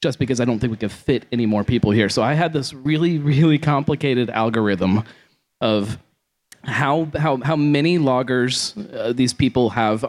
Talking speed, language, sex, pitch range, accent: 180 wpm, English, male, 105-135 Hz, American